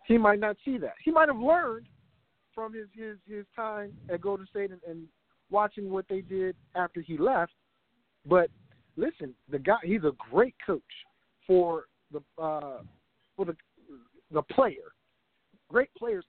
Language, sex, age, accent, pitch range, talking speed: English, male, 50-69, American, 150-205 Hz, 160 wpm